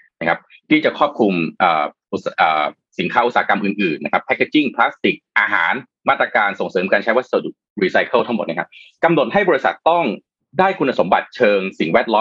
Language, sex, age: Thai, male, 30-49